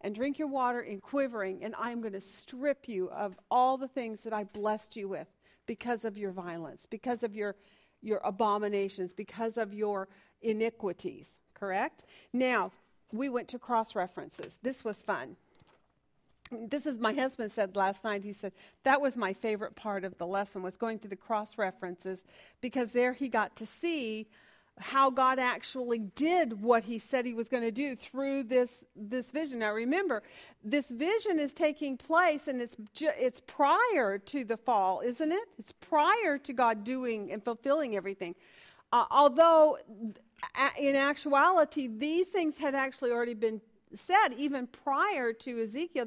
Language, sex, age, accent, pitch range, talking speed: English, female, 50-69, American, 210-275 Hz, 165 wpm